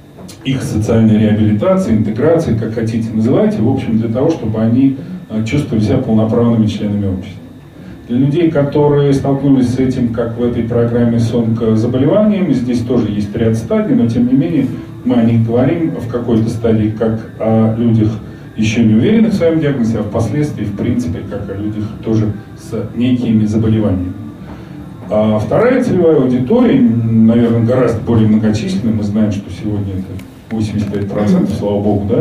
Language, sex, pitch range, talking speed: Russian, male, 110-130 Hz, 155 wpm